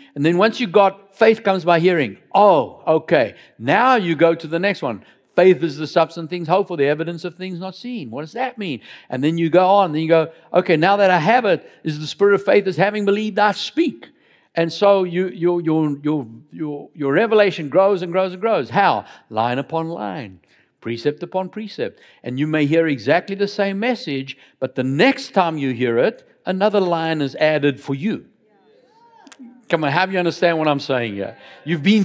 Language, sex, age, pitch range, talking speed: English, male, 60-79, 160-215 Hz, 215 wpm